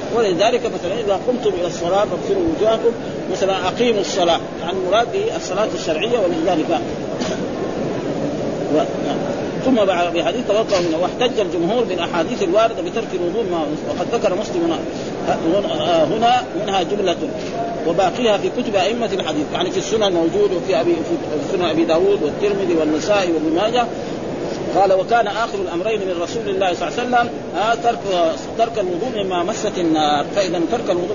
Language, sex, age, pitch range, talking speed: Arabic, male, 40-59, 185-245 Hz, 145 wpm